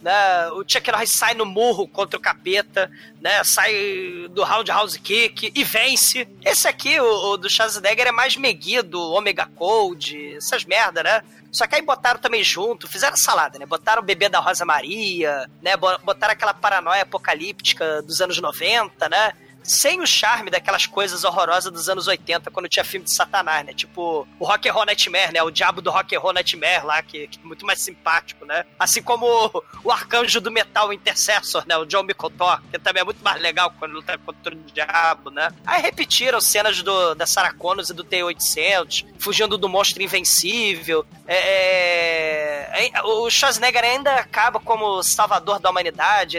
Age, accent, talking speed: 20-39, Brazilian, 175 wpm